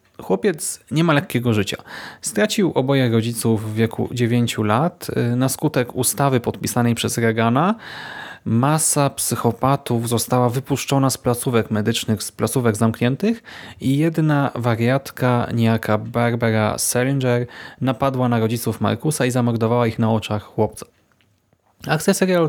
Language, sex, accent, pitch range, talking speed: Polish, male, native, 115-145 Hz, 120 wpm